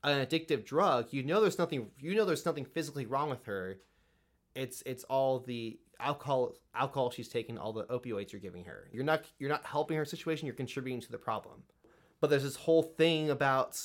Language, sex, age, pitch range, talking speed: English, male, 20-39, 115-140 Hz, 205 wpm